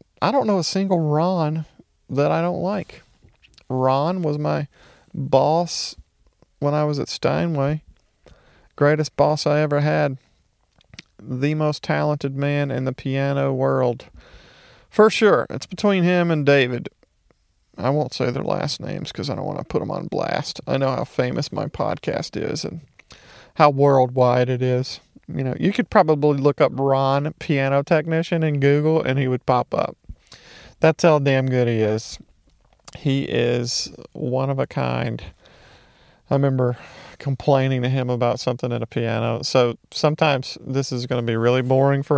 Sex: male